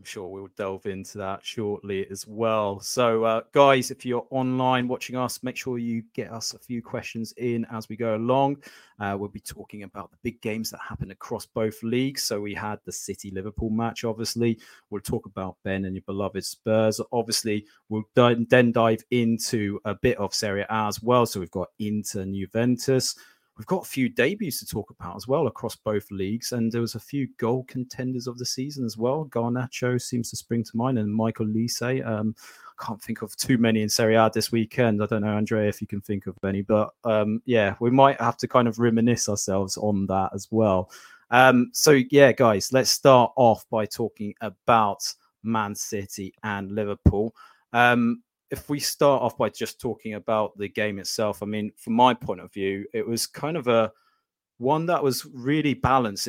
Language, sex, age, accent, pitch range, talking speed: English, male, 30-49, British, 105-120 Hz, 205 wpm